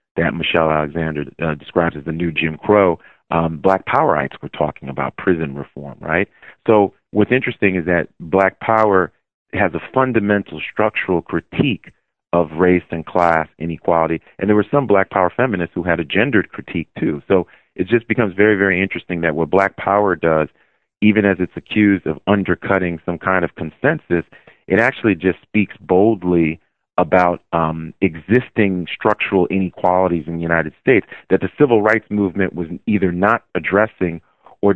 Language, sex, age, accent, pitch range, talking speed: English, male, 40-59, American, 85-100 Hz, 165 wpm